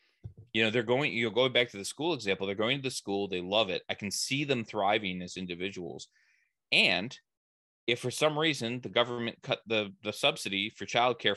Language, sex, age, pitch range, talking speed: English, male, 20-39, 95-125 Hz, 210 wpm